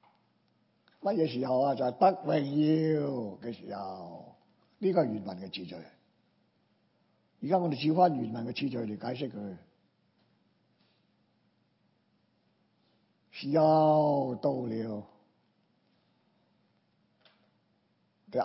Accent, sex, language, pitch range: American, male, Chinese, 105-155 Hz